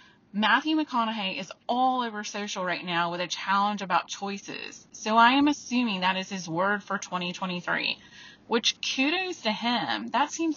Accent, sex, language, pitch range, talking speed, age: American, female, English, 185-240 Hz, 165 wpm, 30-49